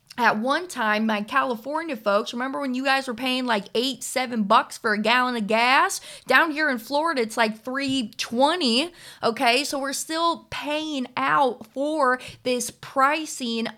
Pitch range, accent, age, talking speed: 220-270 Hz, American, 20-39, 160 wpm